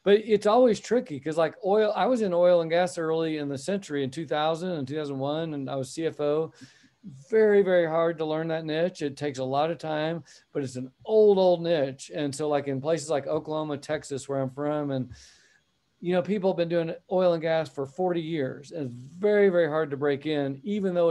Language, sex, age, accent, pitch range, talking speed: English, male, 50-69, American, 140-170 Hz, 220 wpm